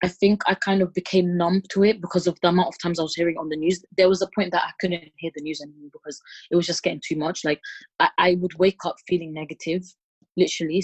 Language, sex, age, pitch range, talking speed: English, female, 20-39, 160-185 Hz, 265 wpm